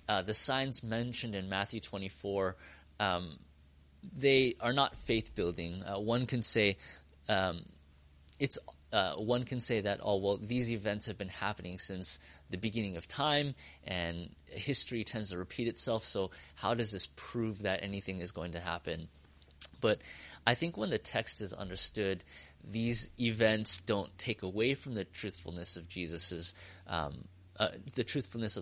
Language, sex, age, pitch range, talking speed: English, male, 30-49, 85-110 Hz, 160 wpm